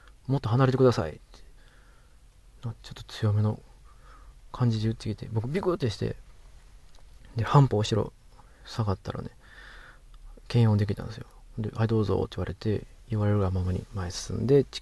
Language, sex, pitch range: Japanese, male, 80-120 Hz